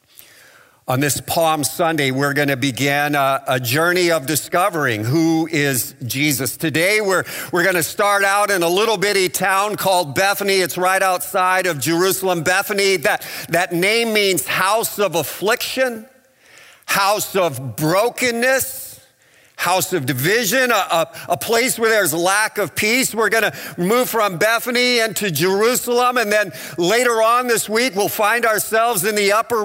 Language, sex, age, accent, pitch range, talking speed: English, male, 50-69, American, 160-220 Hz, 160 wpm